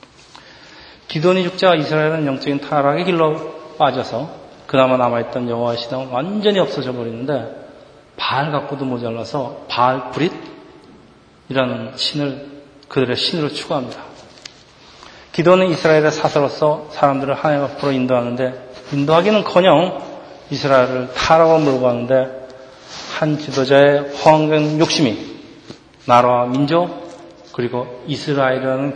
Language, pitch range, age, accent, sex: Korean, 130-155 Hz, 40-59, native, male